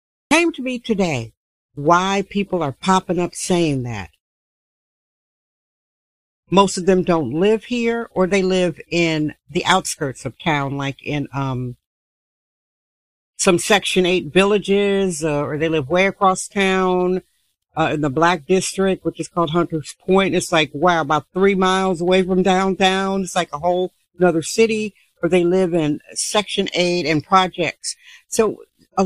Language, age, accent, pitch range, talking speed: English, 60-79, American, 155-195 Hz, 160 wpm